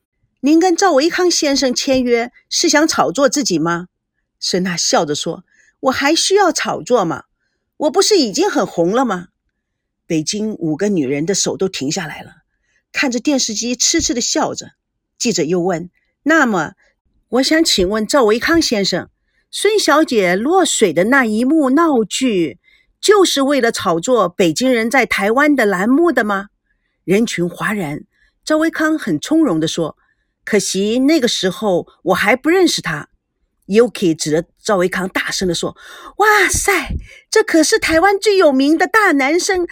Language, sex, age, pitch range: Chinese, female, 50-69, 205-320 Hz